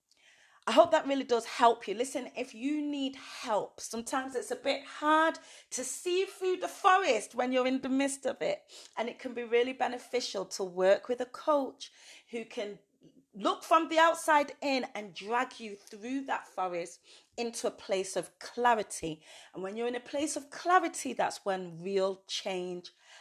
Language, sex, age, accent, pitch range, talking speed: English, female, 30-49, British, 190-255 Hz, 180 wpm